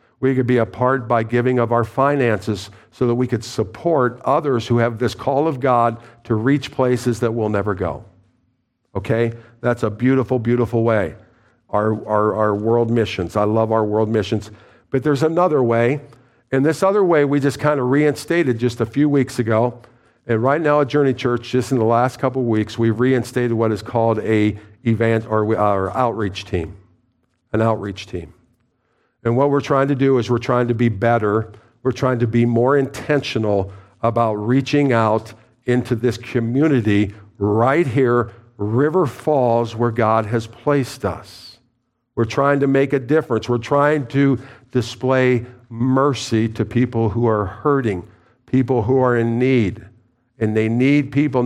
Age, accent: 50-69, American